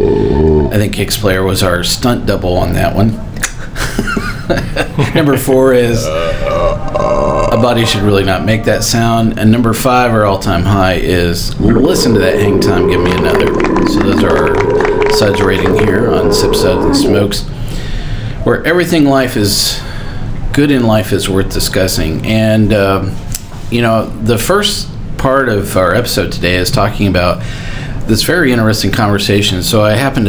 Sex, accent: male, American